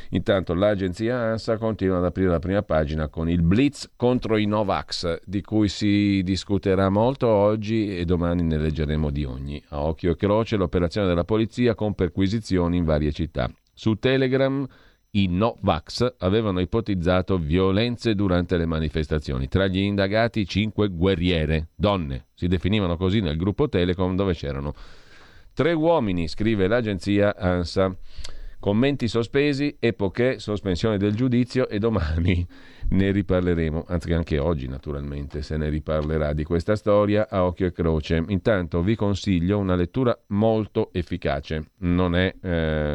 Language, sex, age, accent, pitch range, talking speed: Italian, male, 40-59, native, 85-105 Hz, 145 wpm